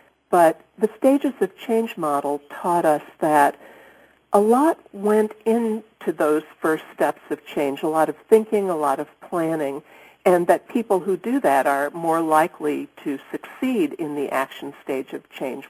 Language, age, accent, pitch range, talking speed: English, 50-69, American, 155-220 Hz, 165 wpm